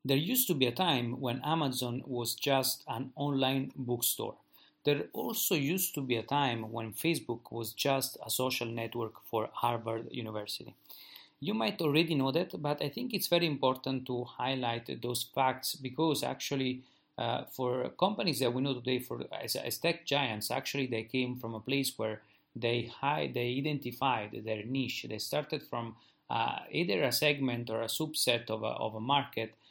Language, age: English, 30-49